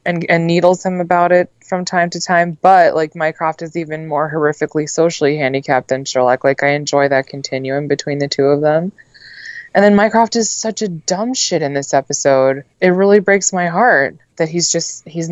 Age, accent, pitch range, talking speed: 20-39, American, 140-170 Hz, 200 wpm